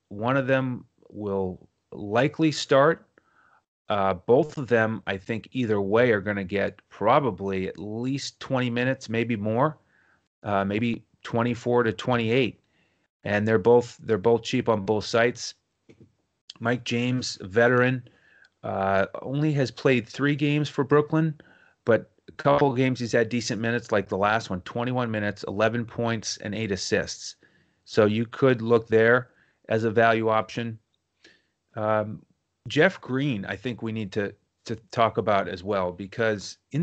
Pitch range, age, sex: 105-125 Hz, 30-49, male